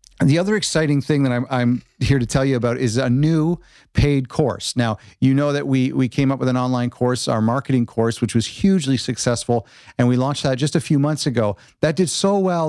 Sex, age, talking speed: male, 50-69, 230 wpm